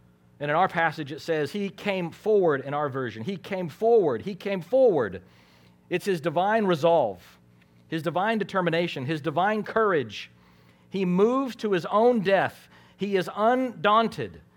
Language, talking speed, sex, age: English, 150 wpm, male, 50-69